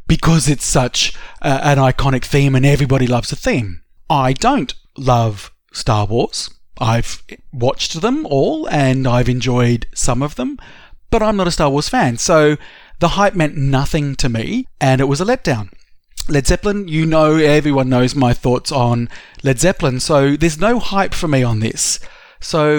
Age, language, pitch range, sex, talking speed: 30-49, English, 125-165 Hz, male, 170 wpm